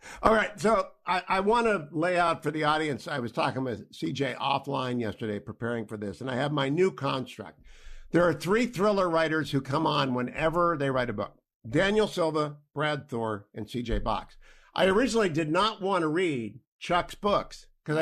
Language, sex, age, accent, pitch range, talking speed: English, male, 50-69, American, 140-185 Hz, 195 wpm